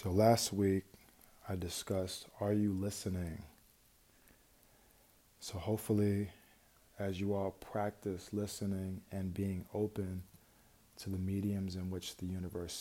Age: 20-39